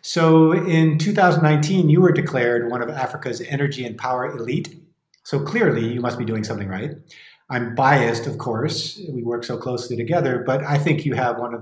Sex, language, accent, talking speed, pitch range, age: male, English, American, 190 wpm, 115-140 Hz, 40-59